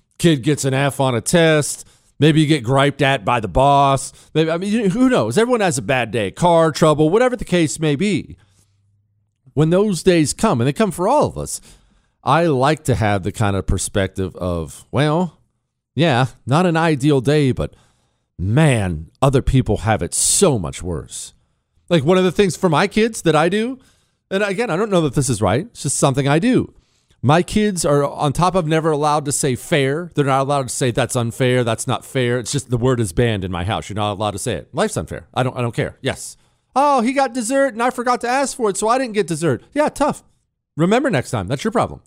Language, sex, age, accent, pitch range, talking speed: English, male, 40-59, American, 115-165 Hz, 225 wpm